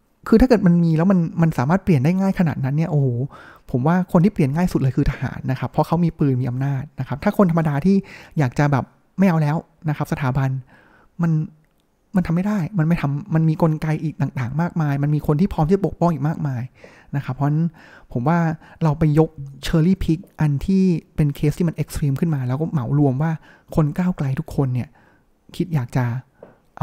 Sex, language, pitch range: male, Thai, 140-175 Hz